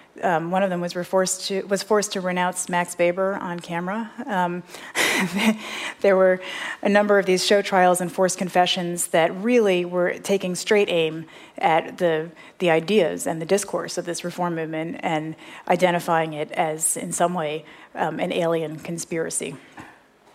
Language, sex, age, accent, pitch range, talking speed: English, female, 30-49, American, 175-205 Hz, 155 wpm